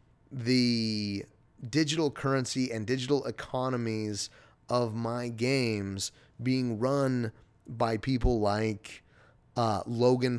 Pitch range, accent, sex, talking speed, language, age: 110-130 Hz, American, male, 90 wpm, English, 30-49